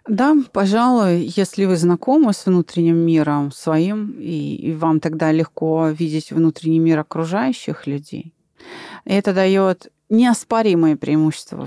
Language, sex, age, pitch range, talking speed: Russian, female, 30-49, 165-215 Hz, 115 wpm